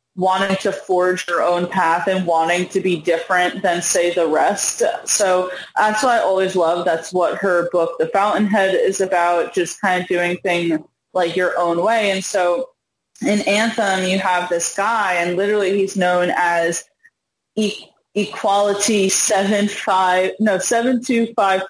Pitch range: 175-205 Hz